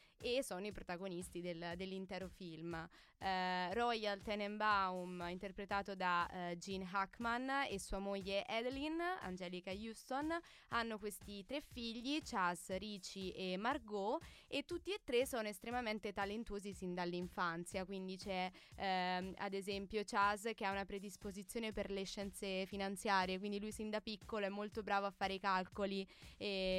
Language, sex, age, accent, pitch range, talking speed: Italian, female, 20-39, native, 190-225 Hz, 145 wpm